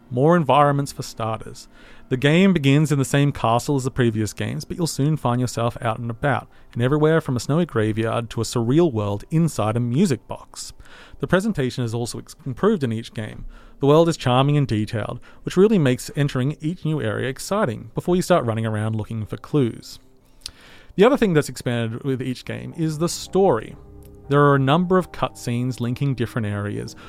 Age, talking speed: 30-49, 195 wpm